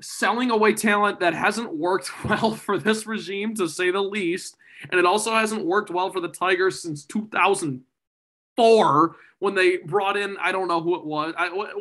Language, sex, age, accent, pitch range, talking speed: English, male, 20-39, American, 150-195 Hz, 180 wpm